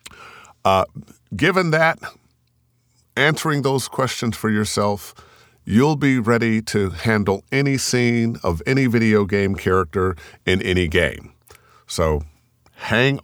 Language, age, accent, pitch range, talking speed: English, 50-69, American, 100-130 Hz, 110 wpm